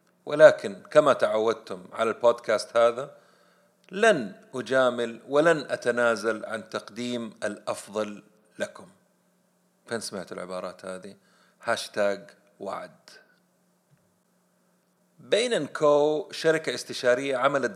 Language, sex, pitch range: Arabic, male, 110-135 Hz